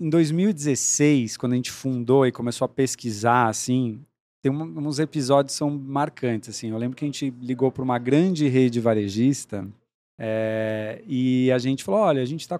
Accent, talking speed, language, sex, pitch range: Brazilian, 180 wpm, Portuguese, male, 120-160 Hz